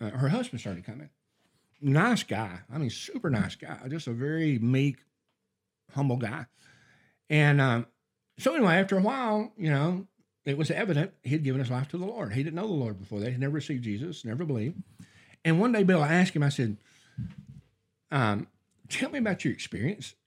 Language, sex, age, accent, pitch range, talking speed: English, male, 60-79, American, 115-160 Hz, 195 wpm